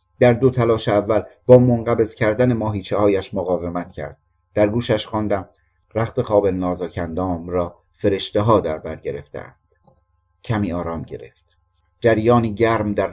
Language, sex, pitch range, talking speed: Persian, male, 90-120 Hz, 125 wpm